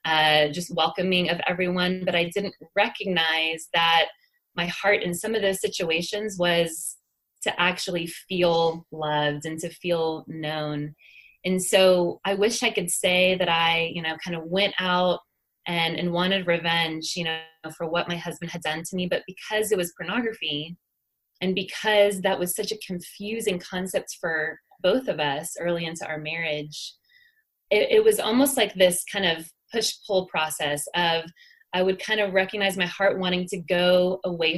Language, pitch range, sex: English, 165-200 Hz, female